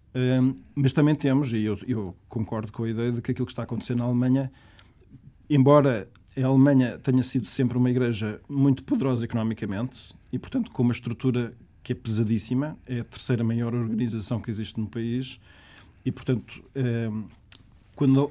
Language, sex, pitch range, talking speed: Portuguese, male, 115-130 Hz, 165 wpm